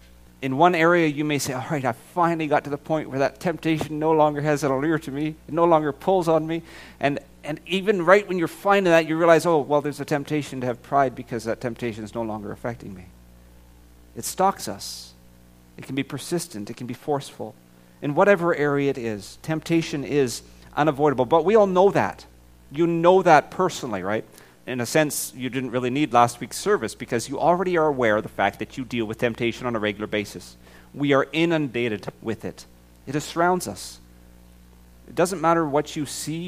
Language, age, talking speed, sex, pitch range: English, 40-59, 205 wpm, male, 105-155 Hz